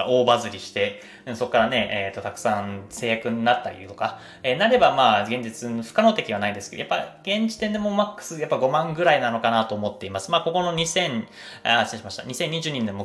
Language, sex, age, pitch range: Japanese, male, 20-39, 105-170 Hz